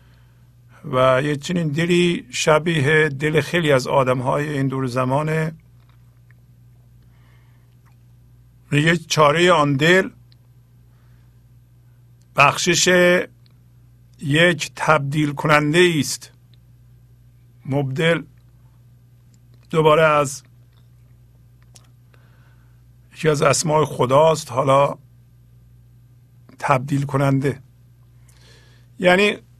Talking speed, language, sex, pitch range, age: 65 wpm, Persian, male, 120-155 Hz, 50-69